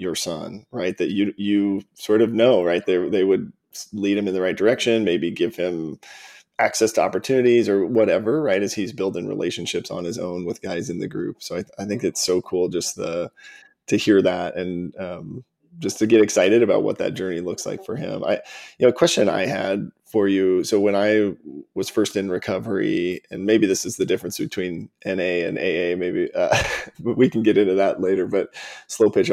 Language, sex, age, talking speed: English, male, 20-39, 210 wpm